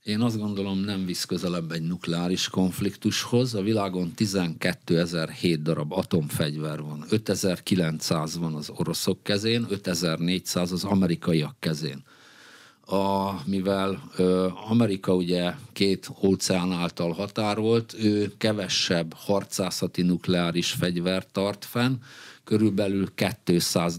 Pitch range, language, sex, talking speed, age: 90-110 Hz, Hungarian, male, 105 wpm, 50-69